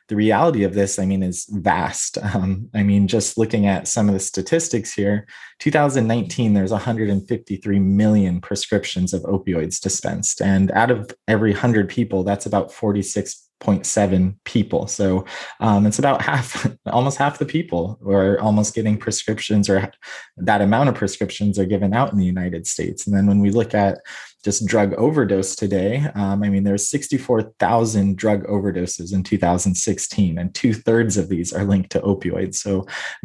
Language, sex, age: English, male, 20-39